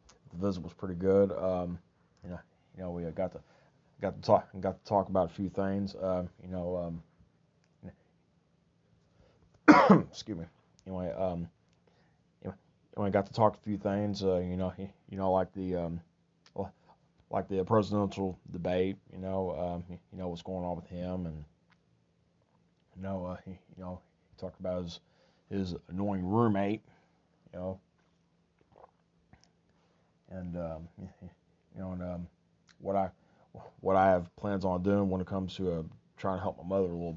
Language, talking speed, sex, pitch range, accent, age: English, 165 wpm, male, 85-95 Hz, American, 20-39